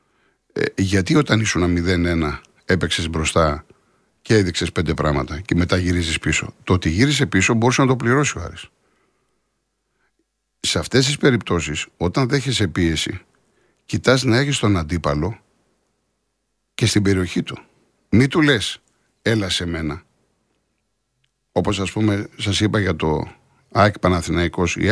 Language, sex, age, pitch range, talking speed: Greek, male, 60-79, 85-125 Hz, 135 wpm